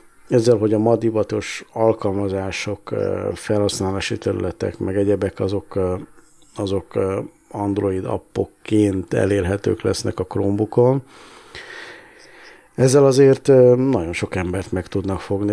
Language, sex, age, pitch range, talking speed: Hungarian, male, 50-69, 95-115 Hz, 95 wpm